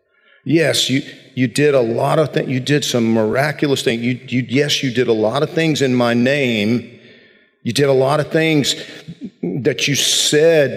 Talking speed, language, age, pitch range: 190 wpm, English, 50-69, 105-135 Hz